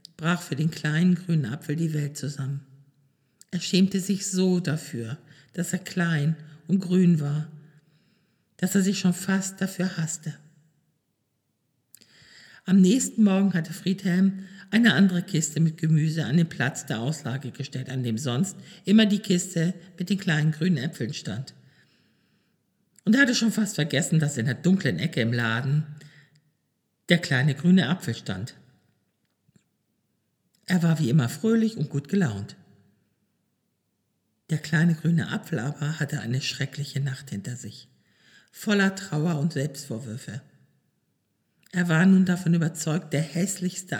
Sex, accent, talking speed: male, German, 140 wpm